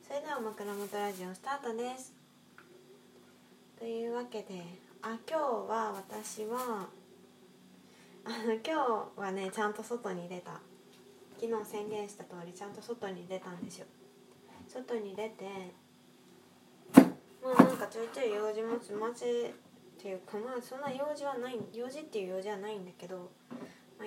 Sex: female